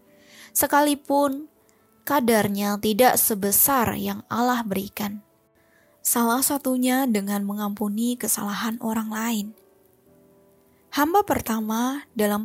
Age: 20-39